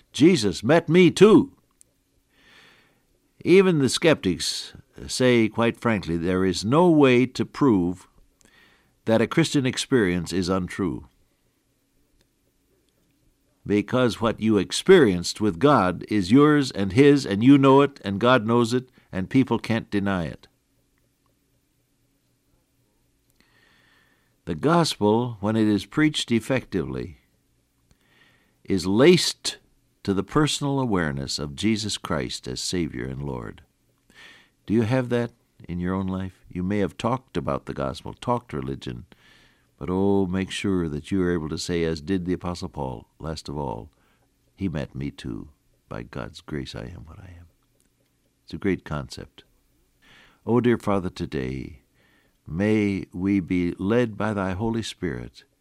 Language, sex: English, male